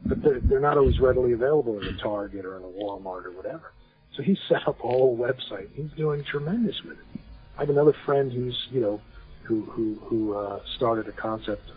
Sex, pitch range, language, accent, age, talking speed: male, 100-120 Hz, English, American, 50-69, 215 wpm